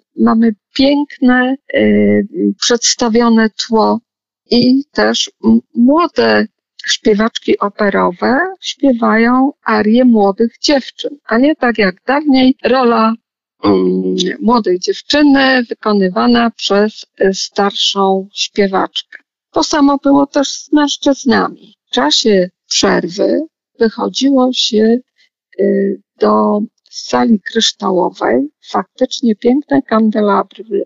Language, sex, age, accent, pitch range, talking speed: Polish, female, 50-69, native, 200-260 Hz, 90 wpm